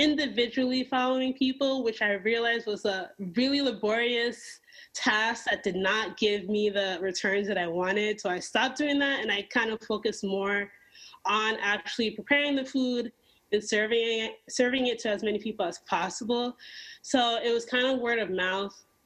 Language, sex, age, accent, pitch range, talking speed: English, female, 20-39, American, 200-245 Hz, 175 wpm